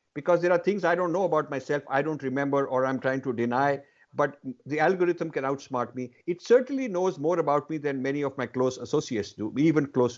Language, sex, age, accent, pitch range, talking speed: English, male, 50-69, Indian, 130-175 Hz, 225 wpm